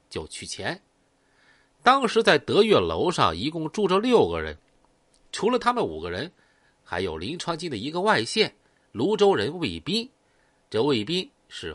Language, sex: Chinese, male